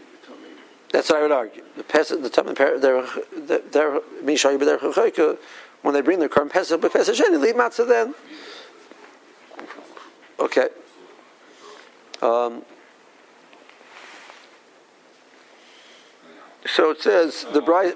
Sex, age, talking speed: male, 50-69, 55 wpm